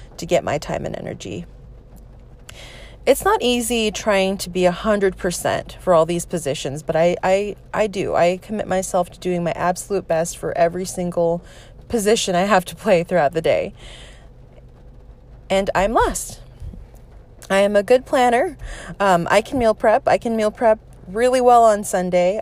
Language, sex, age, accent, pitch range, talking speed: English, female, 30-49, American, 165-210 Hz, 170 wpm